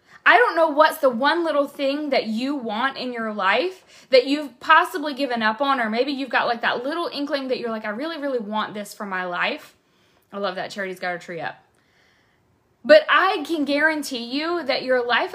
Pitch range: 215-285 Hz